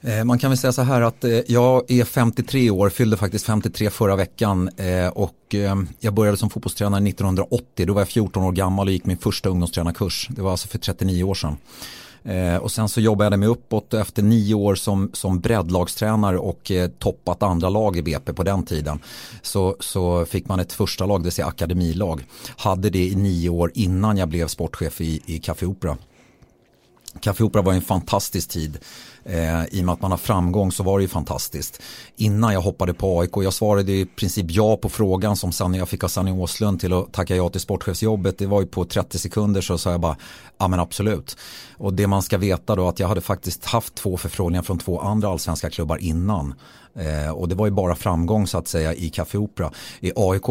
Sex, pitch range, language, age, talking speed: male, 90-105 Hz, Swedish, 30-49, 210 wpm